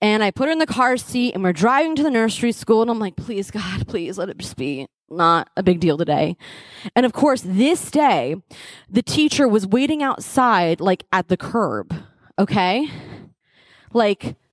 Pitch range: 190-295 Hz